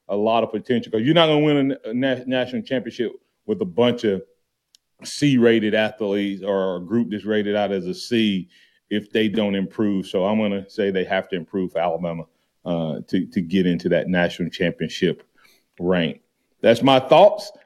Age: 40-59